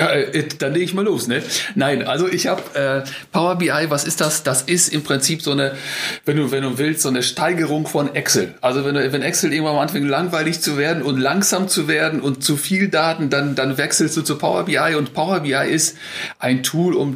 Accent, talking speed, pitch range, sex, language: German, 225 wpm, 135-165 Hz, male, German